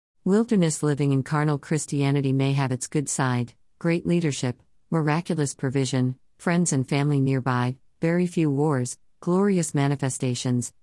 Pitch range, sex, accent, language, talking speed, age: 130-165 Hz, female, American, English, 125 wpm, 50-69